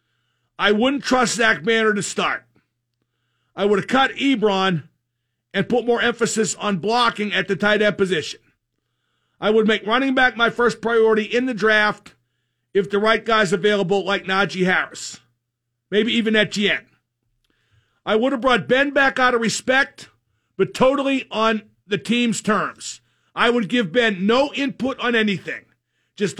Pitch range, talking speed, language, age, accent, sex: 175-245 Hz, 155 wpm, English, 50-69, American, male